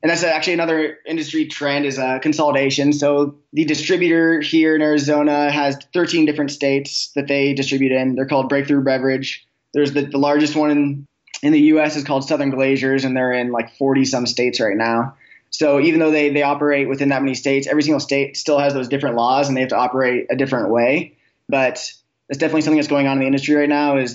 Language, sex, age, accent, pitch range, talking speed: English, male, 20-39, American, 130-145 Hz, 215 wpm